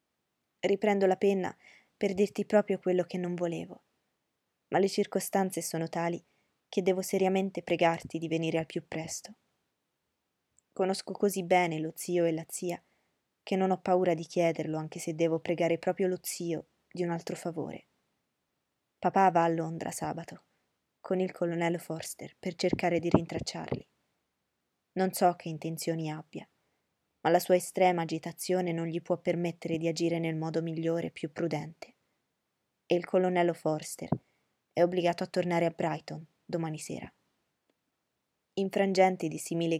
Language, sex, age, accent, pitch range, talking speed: Italian, female, 20-39, native, 165-185 Hz, 150 wpm